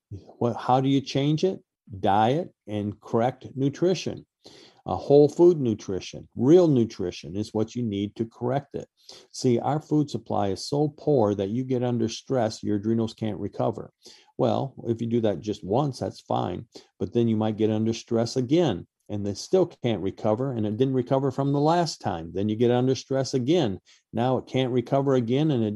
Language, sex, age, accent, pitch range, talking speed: English, male, 50-69, American, 100-125 Hz, 190 wpm